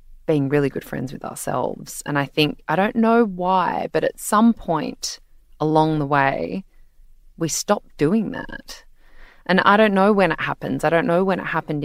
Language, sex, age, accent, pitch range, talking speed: English, female, 20-39, Australian, 145-185 Hz, 185 wpm